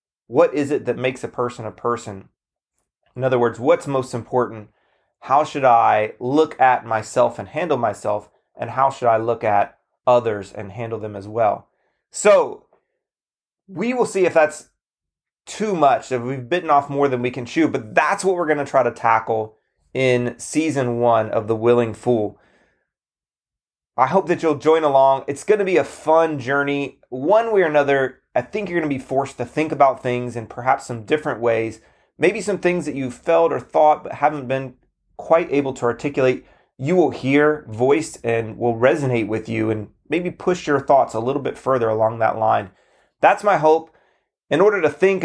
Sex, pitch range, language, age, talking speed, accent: male, 120-150 Hz, English, 30-49, 190 wpm, American